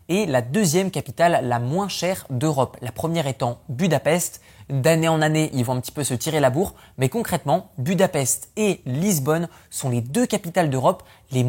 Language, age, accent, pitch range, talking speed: French, 20-39, French, 125-175 Hz, 185 wpm